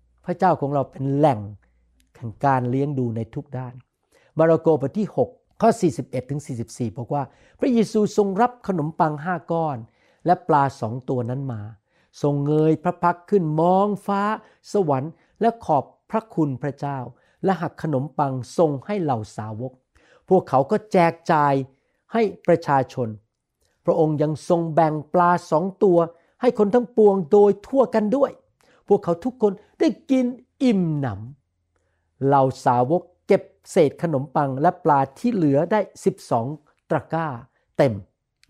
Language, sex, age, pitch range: Thai, male, 60-79, 130-180 Hz